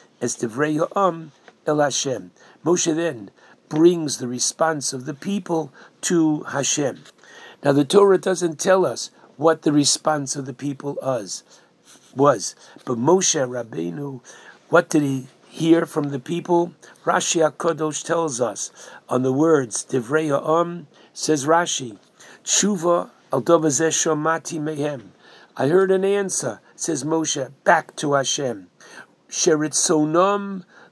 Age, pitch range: 60-79, 150-180 Hz